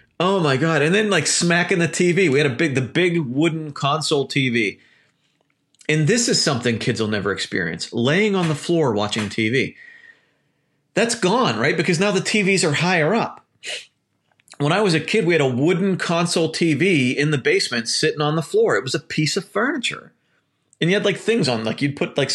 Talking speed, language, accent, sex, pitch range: 205 wpm, English, American, male, 115-170 Hz